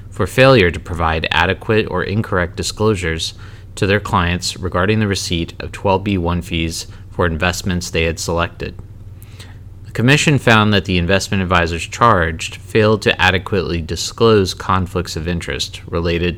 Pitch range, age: 85-105 Hz, 30-49